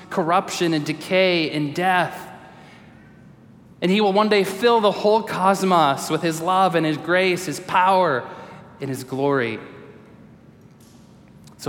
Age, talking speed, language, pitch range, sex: 20-39, 135 wpm, English, 130-185 Hz, male